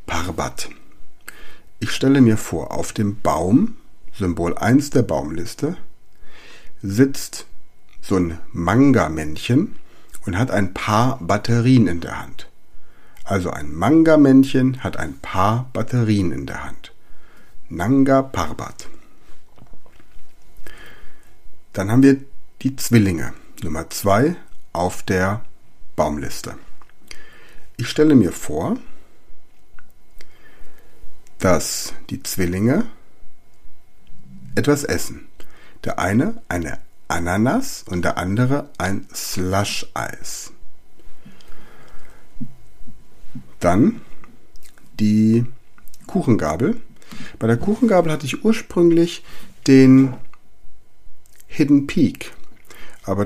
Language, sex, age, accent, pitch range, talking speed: German, male, 60-79, German, 95-135 Hz, 85 wpm